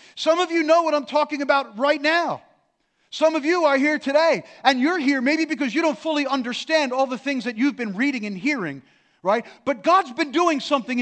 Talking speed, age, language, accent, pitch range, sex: 220 wpm, 40-59, English, American, 200-290 Hz, male